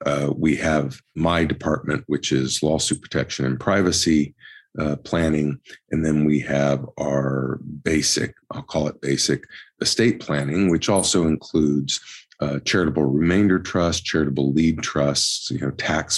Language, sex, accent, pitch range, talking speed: English, male, American, 70-90 Hz, 140 wpm